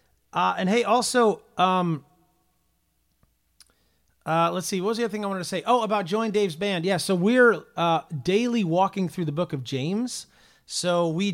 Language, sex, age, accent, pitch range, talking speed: English, male, 30-49, American, 155-195 Hz, 185 wpm